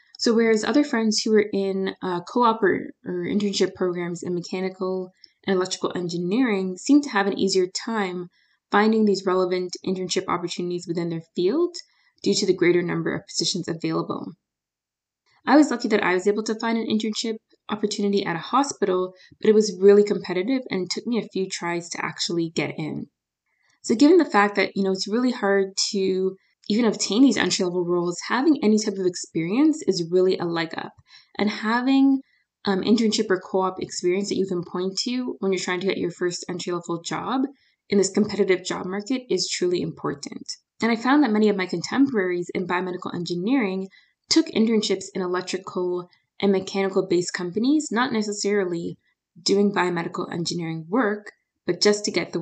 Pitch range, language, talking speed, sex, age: 180-220 Hz, English, 180 wpm, female, 20-39